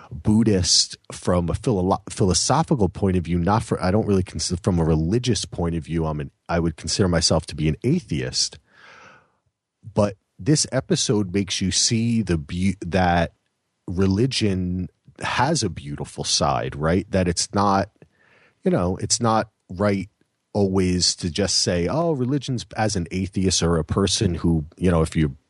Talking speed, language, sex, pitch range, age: 160 wpm, English, male, 85-105 Hz, 40-59